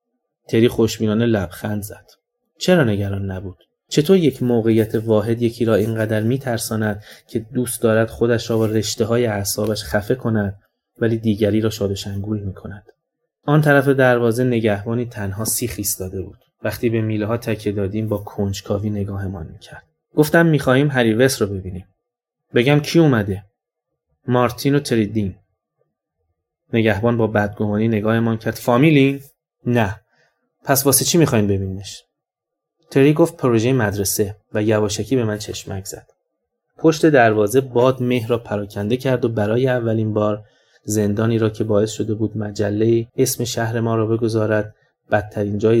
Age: 20-39